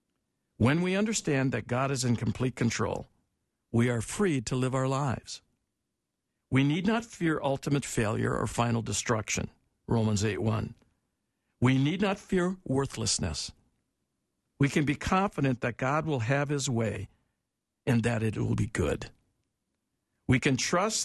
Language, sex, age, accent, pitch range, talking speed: English, male, 60-79, American, 115-150 Hz, 145 wpm